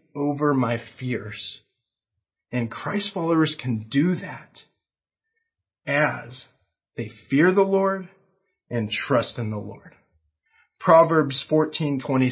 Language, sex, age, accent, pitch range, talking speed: English, male, 30-49, American, 120-170 Hz, 105 wpm